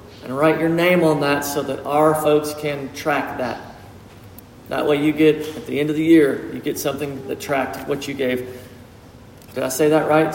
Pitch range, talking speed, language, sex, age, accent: 140-170 Hz, 210 wpm, English, male, 40-59, American